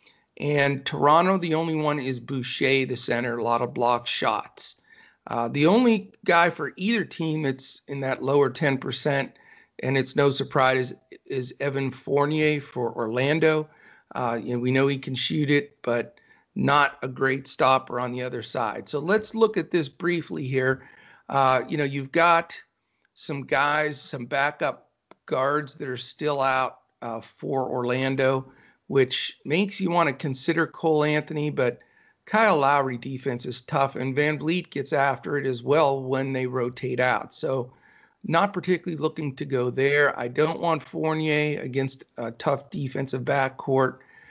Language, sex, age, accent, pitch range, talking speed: English, male, 50-69, American, 130-155 Hz, 165 wpm